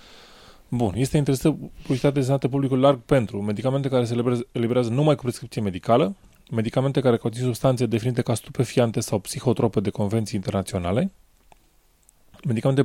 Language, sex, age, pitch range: English, male, 20-39, 105-130 Hz